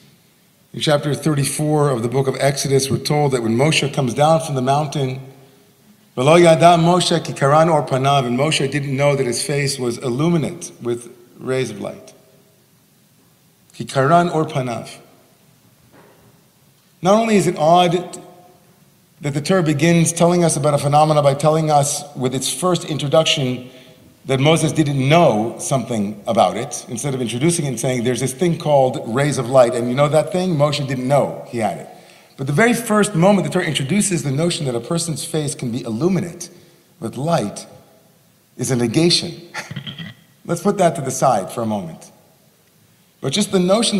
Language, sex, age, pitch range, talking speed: English, male, 40-59, 135-175 Hz, 160 wpm